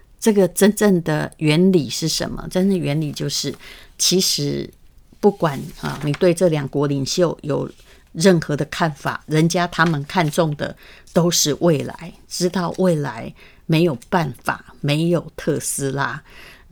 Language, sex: Chinese, female